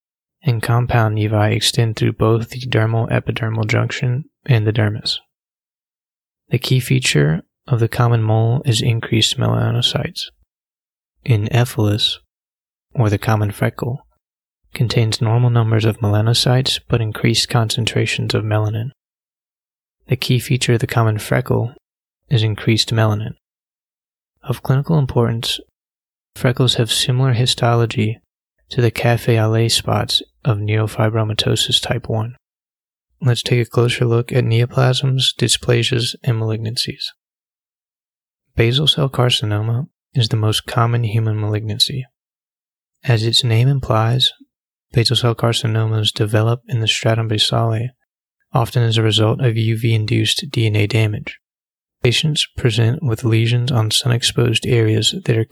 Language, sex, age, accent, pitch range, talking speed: English, male, 20-39, American, 110-125 Hz, 120 wpm